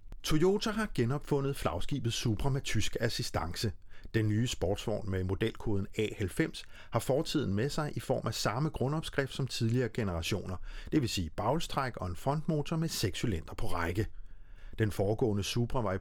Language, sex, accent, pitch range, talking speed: Danish, male, native, 100-140 Hz, 160 wpm